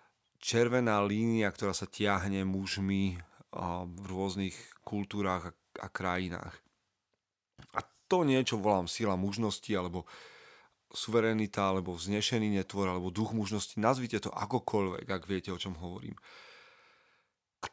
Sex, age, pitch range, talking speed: male, 30-49, 95-115 Hz, 115 wpm